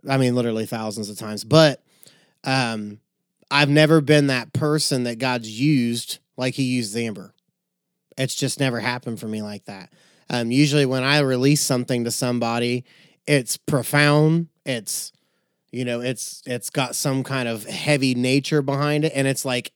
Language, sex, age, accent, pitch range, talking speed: English, male, 30-49, American, 120-145 Hz, 165 wpm